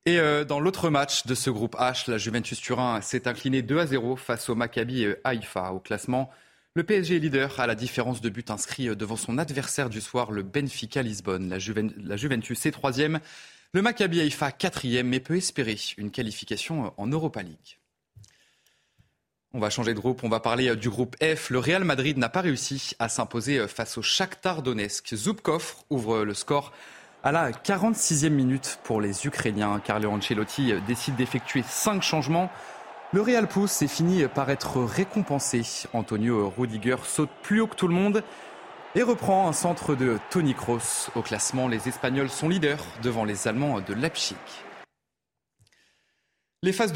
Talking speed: 170 wpm